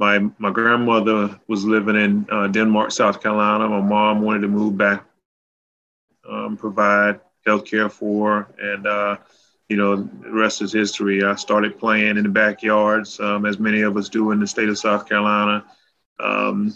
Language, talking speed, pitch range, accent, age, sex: English, 175 wpm, 100-110 Hz, American, 30-49, male